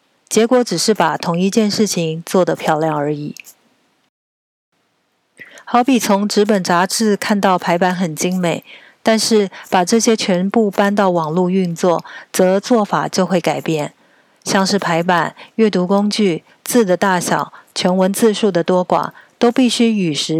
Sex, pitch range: female, 175-215 Hz